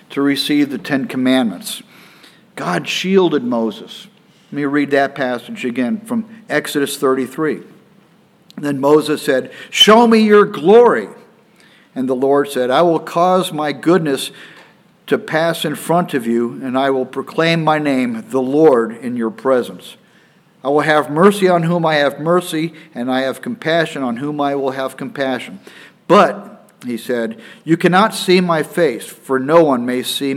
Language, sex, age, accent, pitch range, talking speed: English, male, 50-69, American, 135-185 Hz, 160 wpm